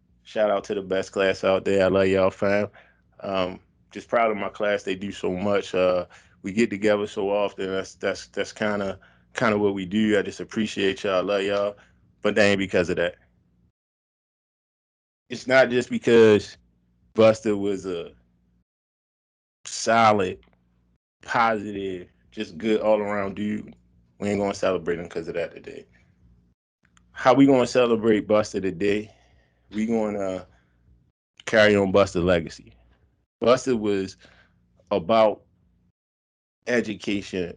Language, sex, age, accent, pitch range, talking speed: English, male, 20-39, American, 85-105 Hz, 145 wpm